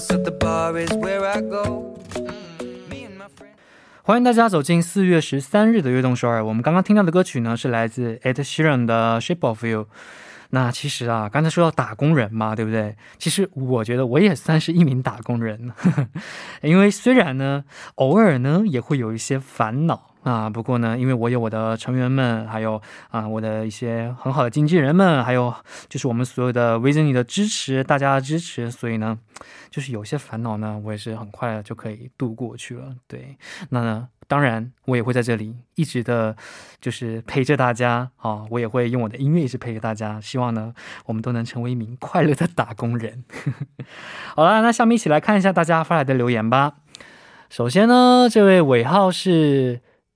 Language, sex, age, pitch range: Korean, male, 20-39, 115-160 Hz